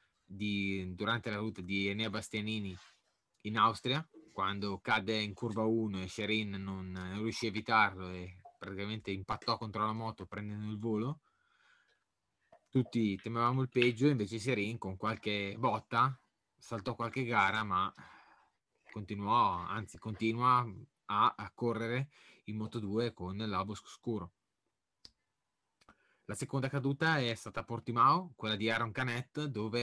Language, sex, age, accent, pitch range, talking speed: Italian, male, 20-39, native, 105-120 Hz, 135 wpm